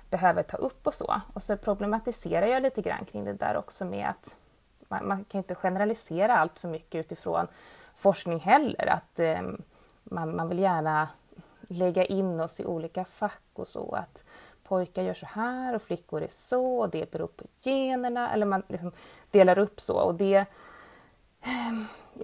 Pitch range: 165-215 Hz